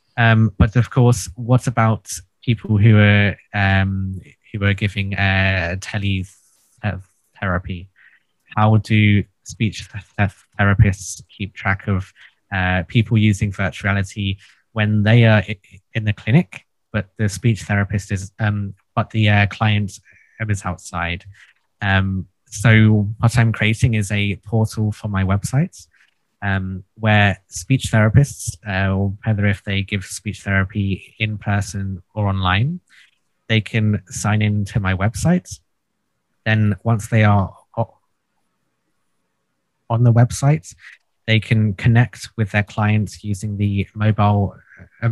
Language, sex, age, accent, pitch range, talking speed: English, male, 20-39, British, 100-110 Hz, 130 wpm